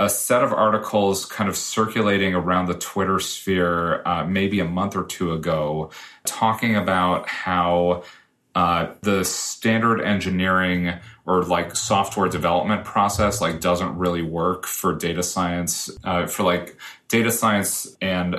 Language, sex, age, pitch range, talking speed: English, male, 30-49, 85-105 Hz, 140 wpm